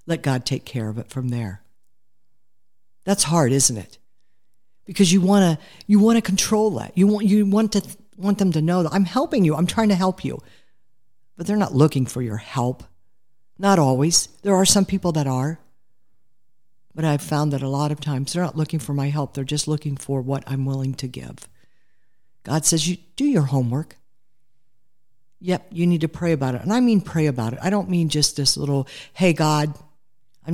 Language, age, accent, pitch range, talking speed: English, 50-69, American, 135-190 Hz, 205 wpm